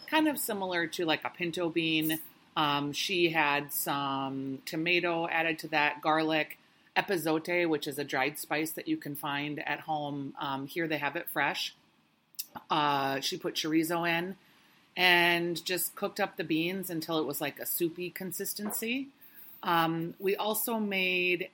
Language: English